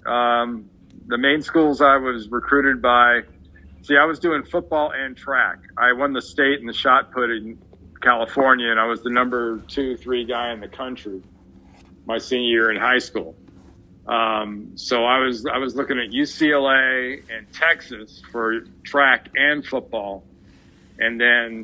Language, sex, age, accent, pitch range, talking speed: English, male, 50-69, American, 95-135 Hz, 165 wpm